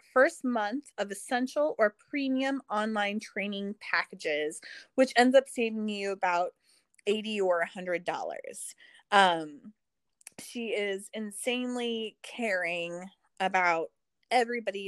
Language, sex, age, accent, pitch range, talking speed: English, female, 20-39, American, 175-220 Hz, 105 wpm